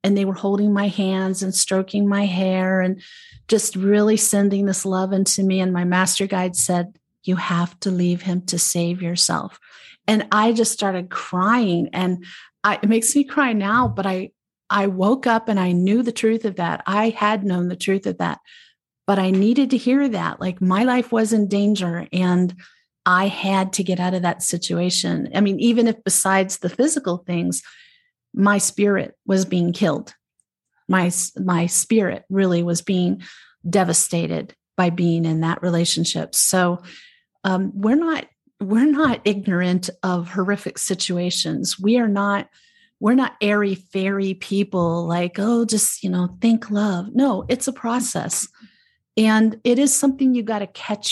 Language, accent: English, American